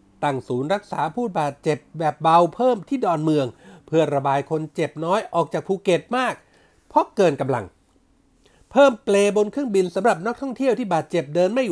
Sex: male